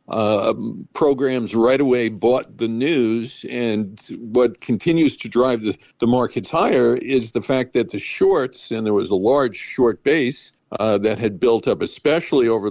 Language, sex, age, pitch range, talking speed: English, male, 50-69, 110-135 Hz, 170 wpm